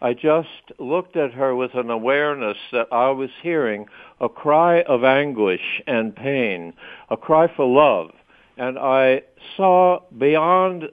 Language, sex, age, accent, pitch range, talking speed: English, male, 60-79, American, 125-170 Hz, 145 wpm